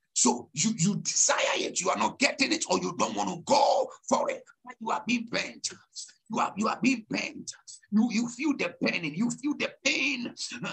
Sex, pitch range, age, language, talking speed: male, 220-265 Hz, 60-79, English, 205 wpm